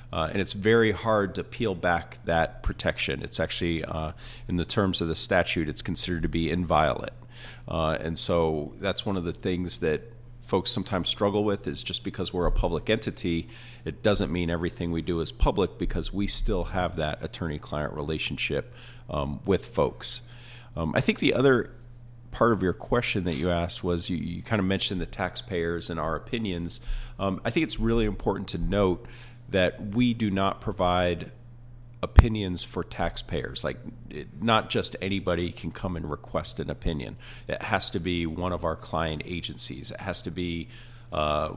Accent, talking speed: American, 180 wpm